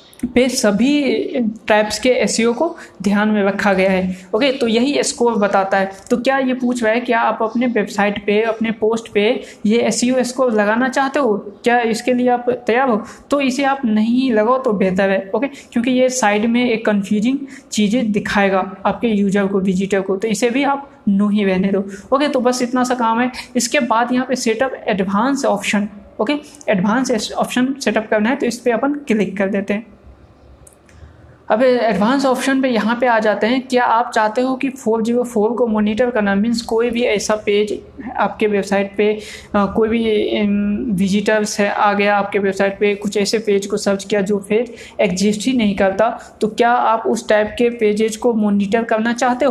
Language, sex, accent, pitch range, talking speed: Hindi, female, native, 205-245 Hz, 195 wpm